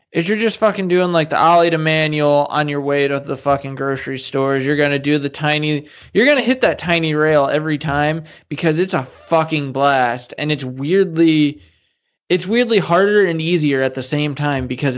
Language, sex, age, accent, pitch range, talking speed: English, male, 20-39, American, 145-185 Hz, 205 wpm